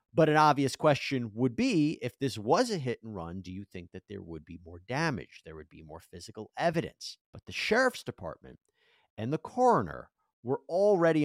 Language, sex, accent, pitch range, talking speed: English, male, American, 90-145 Hz, 195 wpm